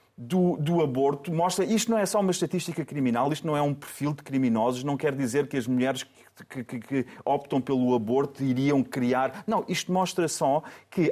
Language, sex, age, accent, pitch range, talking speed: Portuguese, male, 40-59, Portuguese, 135-185 Hz, 200 wpm